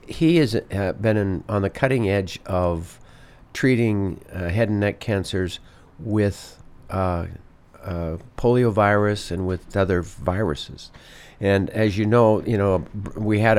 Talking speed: 140 wpm